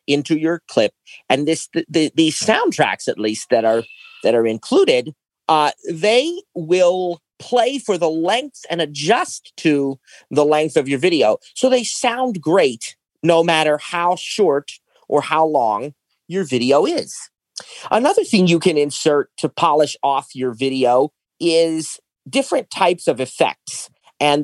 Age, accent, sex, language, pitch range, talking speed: 40-59, American, male, English, 125-180 Hz, 150 wpm